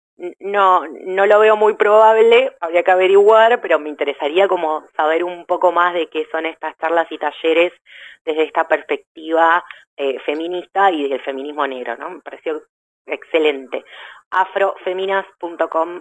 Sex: female